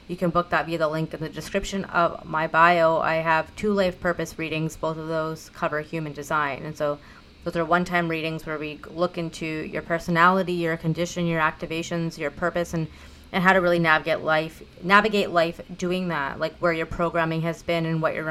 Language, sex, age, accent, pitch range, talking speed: English, female, 30-49, American, 160-180 Hz, 205 wpm